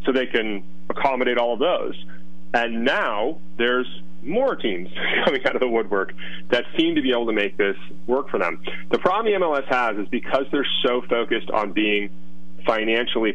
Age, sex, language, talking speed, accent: 30-49, male, English, 185 wpm, American